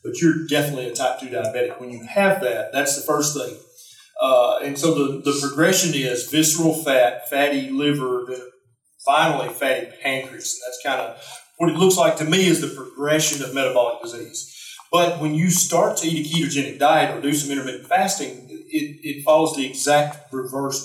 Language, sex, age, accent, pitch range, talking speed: English, male, 40-59, American, 135-170 Hz, 185 wpm